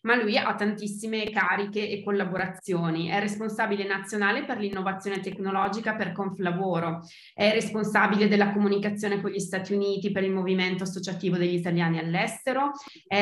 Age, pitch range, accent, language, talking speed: 20-39, 180-210 Hz, native, Italian, 140 wpm